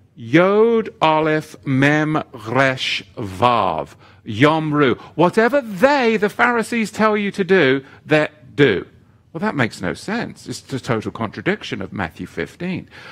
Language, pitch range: English, 130-205 Hz